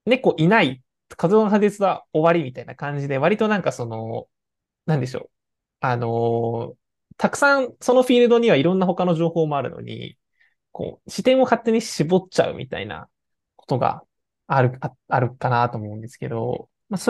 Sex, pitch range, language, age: male, 125-195 Hz, Japanese, 20-39